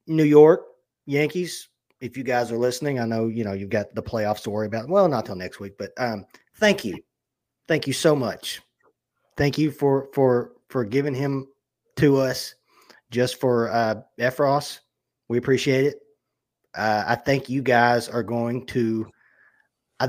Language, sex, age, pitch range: English, male, 30-49, 120-155 Hz